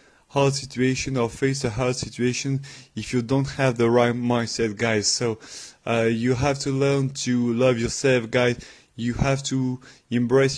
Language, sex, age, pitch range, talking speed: English, male, 20-39, 115-135 Hz, 160 wpm